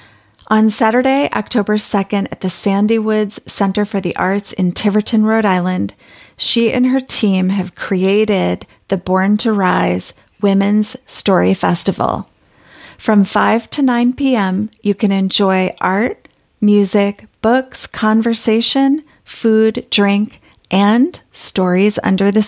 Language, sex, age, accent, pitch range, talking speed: English, female, 30-49, American, 195-230 Hz, 125 wpm